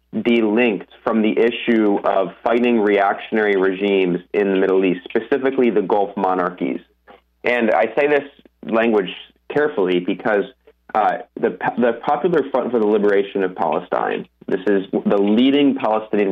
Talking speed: 140 wpm